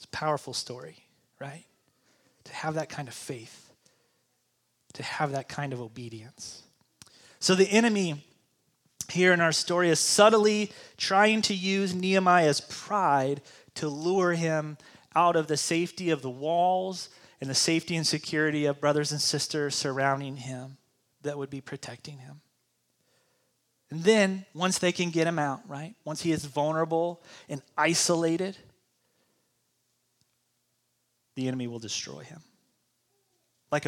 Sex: male